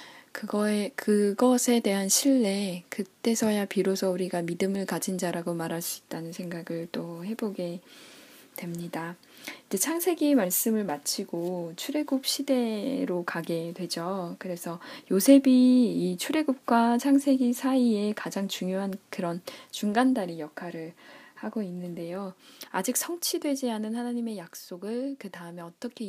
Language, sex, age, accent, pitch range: Korean, female, 10-29, native, 175-235 Hz